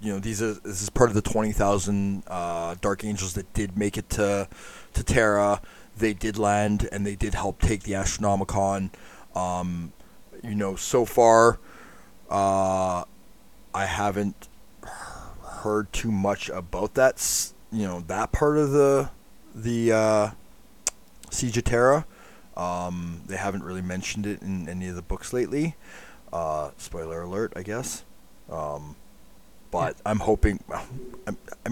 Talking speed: 150 wpm